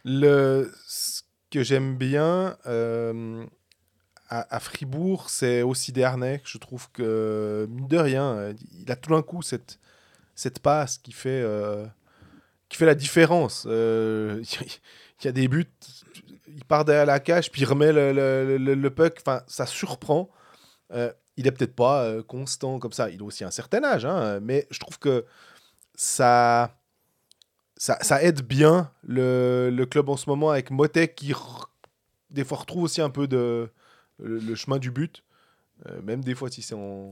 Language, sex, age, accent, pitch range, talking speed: French, male, 20-39, French, 120-155 Hz, 185 wpm